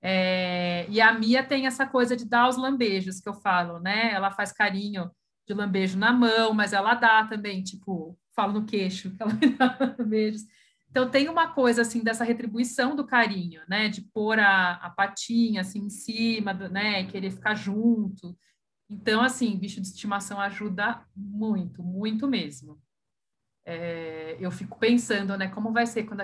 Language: Portuguese